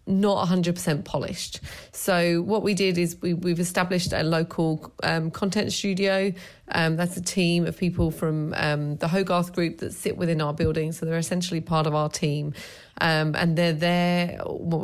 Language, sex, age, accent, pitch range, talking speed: English, female, 30-49, British, 160-185 Hz, 175 wpm